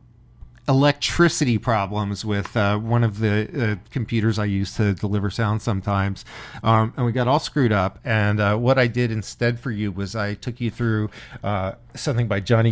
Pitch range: 105-120 Hz